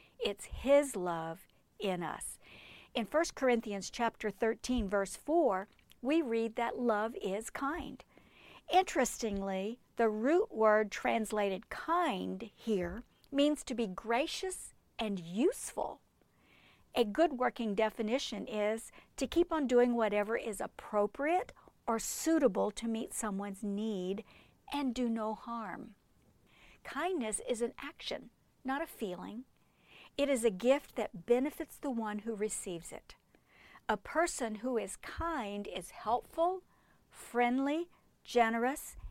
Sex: female